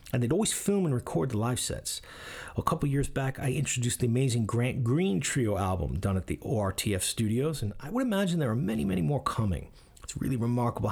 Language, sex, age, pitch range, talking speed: English, male, 40-59, 100-135 Hz, 215 wpm